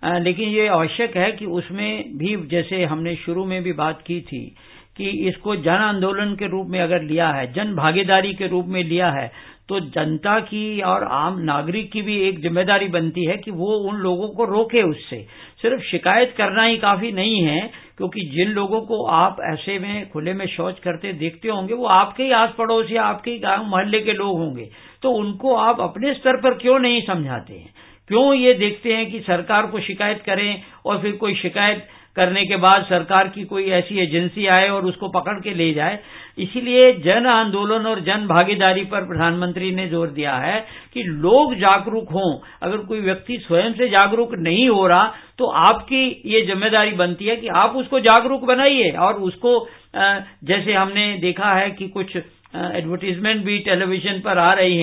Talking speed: 175 wpm